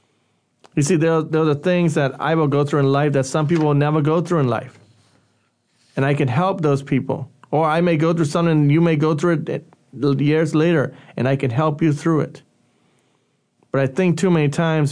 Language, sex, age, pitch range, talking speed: English, male, 30-49, 135-160 Hz, 220 wpm